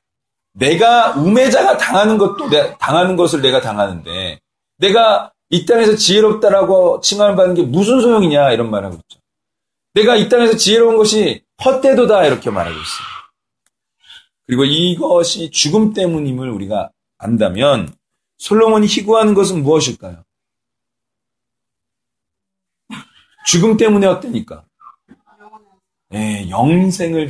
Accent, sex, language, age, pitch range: native, male, Korean, 40-59, 140-220 Hz